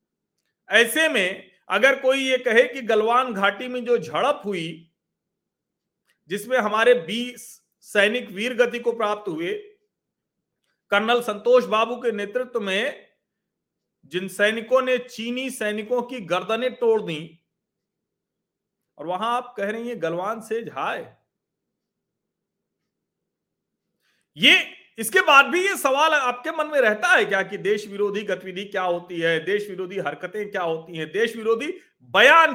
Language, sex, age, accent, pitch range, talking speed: Hindi, male, 40-59, native, 190-255 Hz, 135 wpm